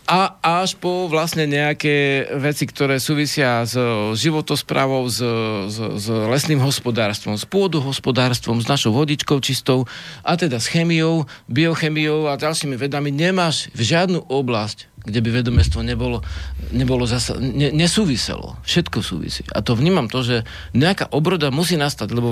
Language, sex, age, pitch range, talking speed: Slovak, male, 50-69, 115-165 Hz, 145 wpm